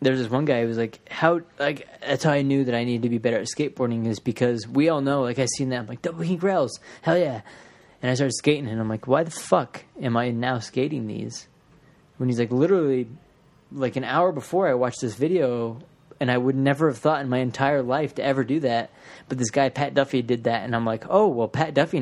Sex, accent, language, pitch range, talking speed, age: male, American, English, 120-150 Hz, 250 wpm, 20-39